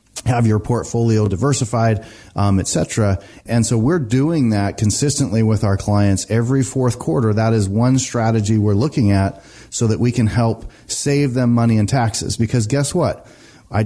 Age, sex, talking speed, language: 30-49, male, 175 wpm, English